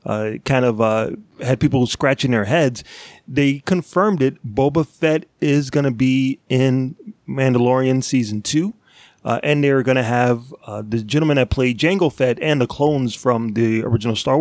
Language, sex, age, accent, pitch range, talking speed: English, male, 30-49, American, 120-145 Hz, 175 wpm